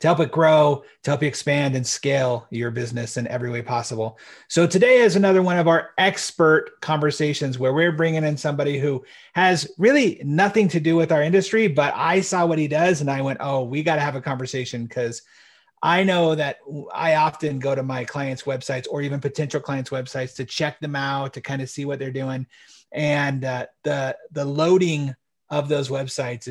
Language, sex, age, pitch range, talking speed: English, male, 30-49, 130-155 Hz, 205 wpm